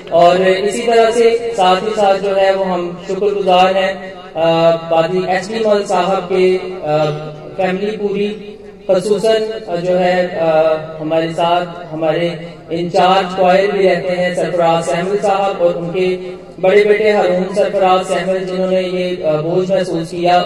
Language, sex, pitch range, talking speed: Hindi, male, 175-200 Hz, 115 wpm